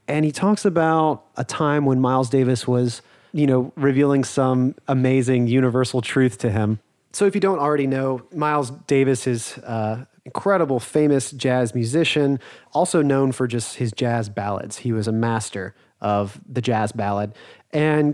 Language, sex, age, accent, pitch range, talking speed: English, male, 30-49, American, 120-150 Hz, 160 wpm